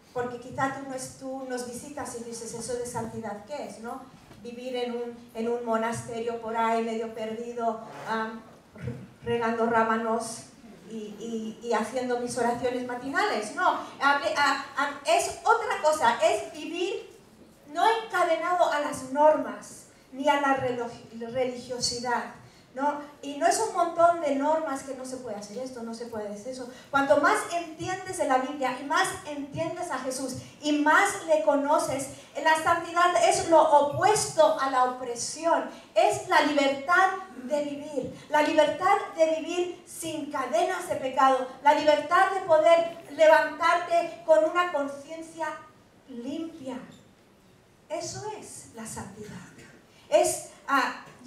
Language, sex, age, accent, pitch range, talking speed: Spanish, female, 40-59, American, 245-325 Hz, 135 wpm